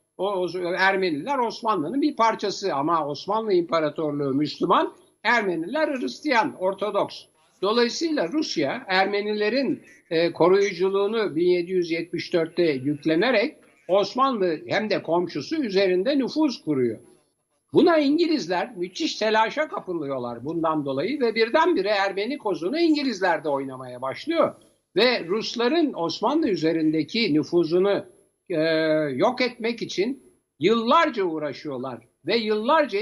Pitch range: 170-270 Hz